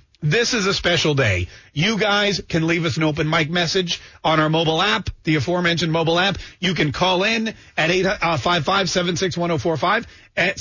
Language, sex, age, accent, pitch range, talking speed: English, male, 40-59, American, 140-205 Hz, 180 wpm